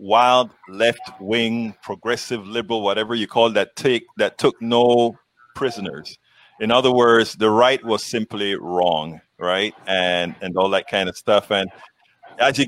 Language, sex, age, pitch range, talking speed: English, male, 30-49, 100-120 Hz, 155 wpm